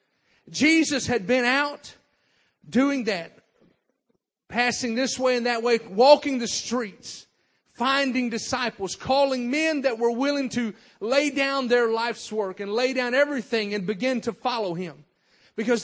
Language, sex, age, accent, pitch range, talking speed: English, male, 40-59, American, 220-275 Hz, 145 wpm